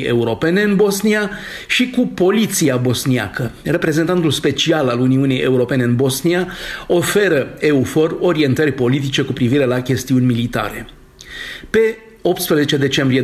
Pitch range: 125-170 Hz